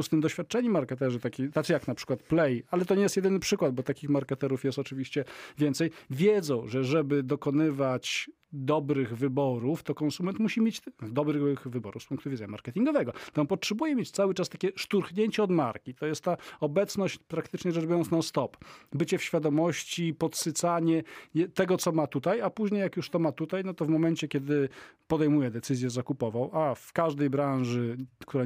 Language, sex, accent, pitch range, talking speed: Polish, male, native, 130-165 Hz, 175 wpm